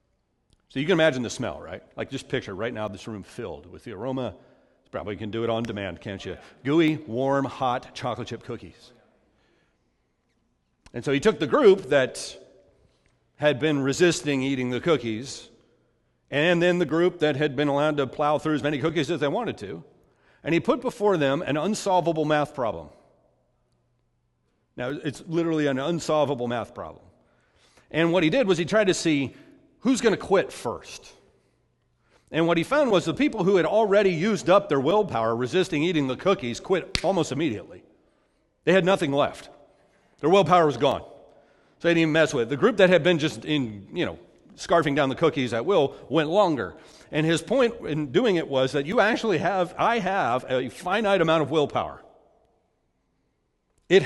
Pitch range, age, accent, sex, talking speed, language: 130-180 Hz, 40-59, American, male, 185 wpm, English